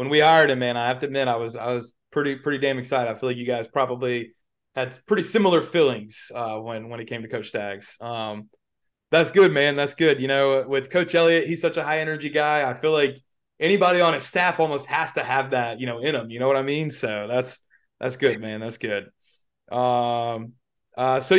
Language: English